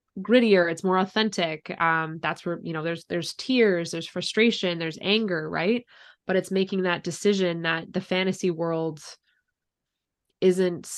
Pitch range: 165-185 Hz